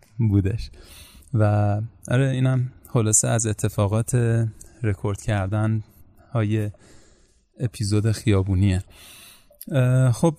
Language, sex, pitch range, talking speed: Persian, male, 105-130 Hz, 75 wpm